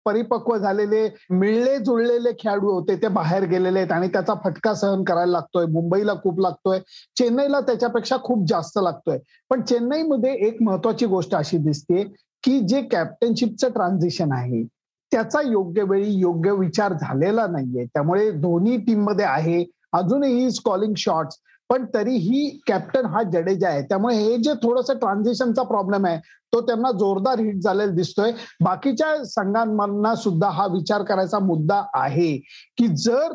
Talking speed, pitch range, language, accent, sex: 145 wpm, 185-240 Hz, Marathi, native, male